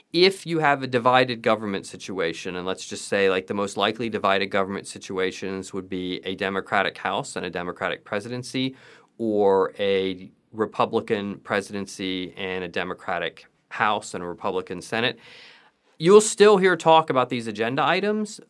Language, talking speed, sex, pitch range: English, 150 wpm, male, 100-135 Hz